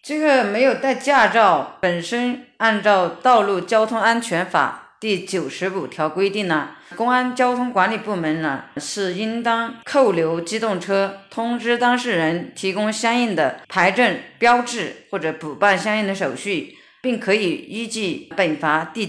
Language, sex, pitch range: Chinese, female, 175-230 Hz